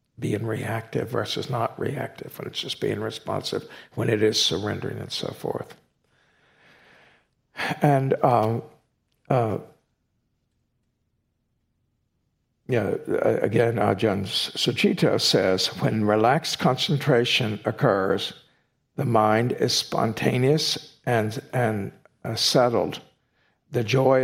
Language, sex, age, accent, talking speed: English, male, 60-79, American, 95 wpm